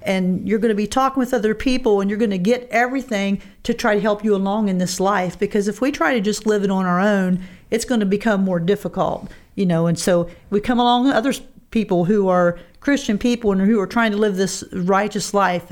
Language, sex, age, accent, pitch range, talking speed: English, female, 50-69, American, 180-215 Hz, 245 wpm